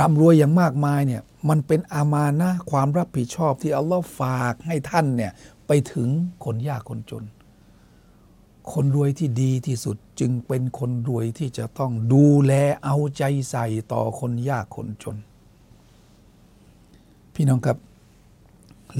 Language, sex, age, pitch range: Thai, male, 60-79, 115-145 Hz